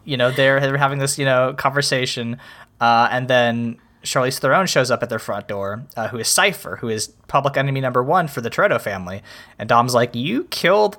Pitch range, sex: 120-150 Hz, male